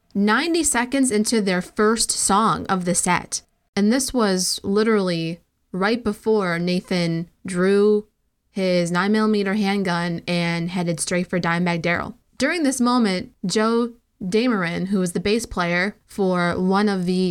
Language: English